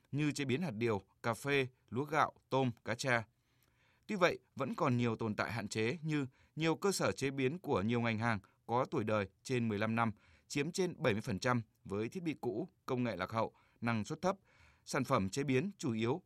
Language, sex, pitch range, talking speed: Vietnamese, male, 115-145 Hz, 210 wpm